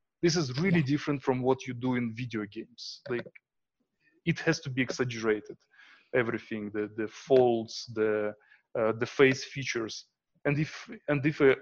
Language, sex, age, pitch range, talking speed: English, male, 20-39, 125-155 Hz, 160 wpm